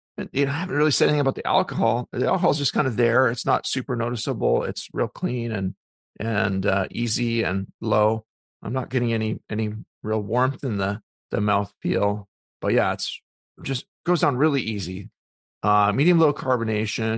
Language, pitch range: English, 100-130 Hz